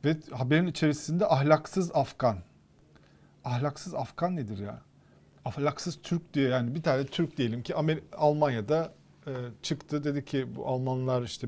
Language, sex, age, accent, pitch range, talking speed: Turkish, male, 40-59, native, 120-155 Hz, 130 wpm